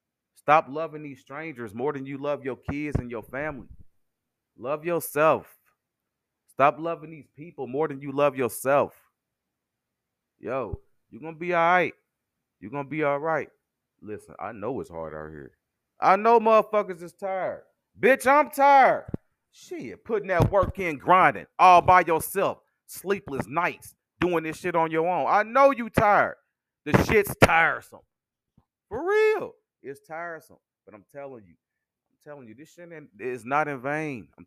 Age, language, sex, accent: 30-49, English, male, American